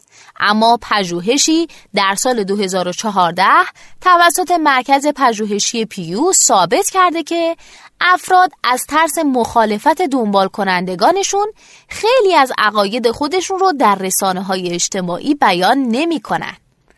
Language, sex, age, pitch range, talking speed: Persian, female, 20-39, 205-320 Hz, 100 wpm